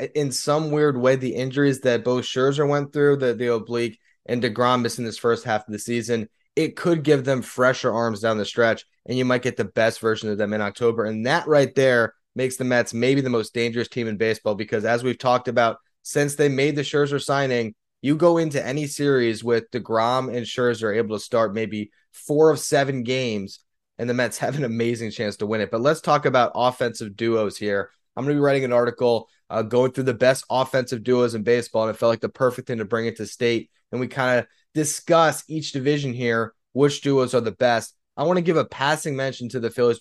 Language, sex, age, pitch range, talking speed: English, male, 20-39, 115-140 Hz, 230 wpm